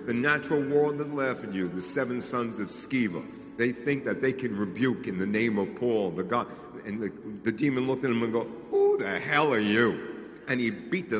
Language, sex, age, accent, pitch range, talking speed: English, male, 60-79, American, 130-190 Hz, 230 wpm